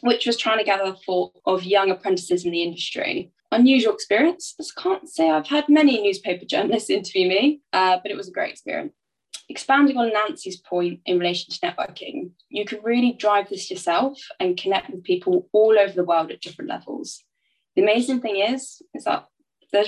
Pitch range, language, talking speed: 180-295 Hz, English, 195 wpm